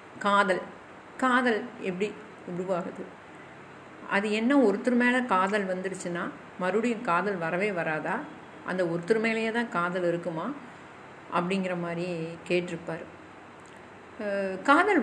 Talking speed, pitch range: 95 wpm, 175-240 Hz